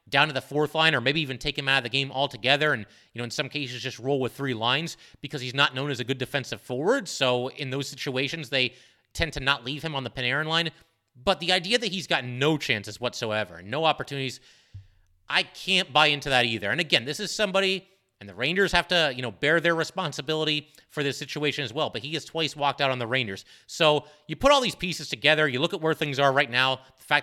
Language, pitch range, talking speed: English, 125-155 Hz, 245 wpm